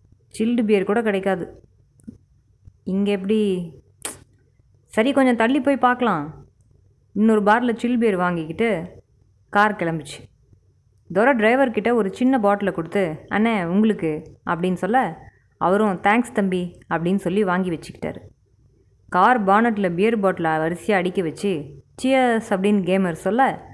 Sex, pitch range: female, 145-220 Hz